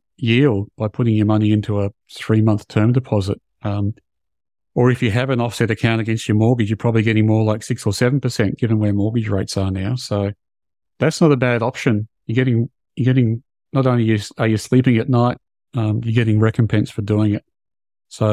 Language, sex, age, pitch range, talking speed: English, male, 40-59, 105-125 Hz, 200 wpm